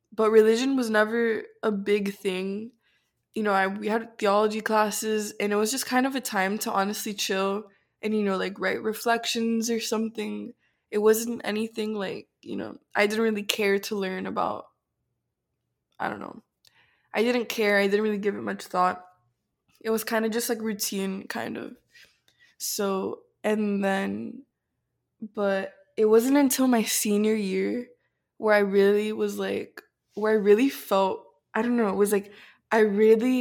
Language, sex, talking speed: English, female, 170 wpm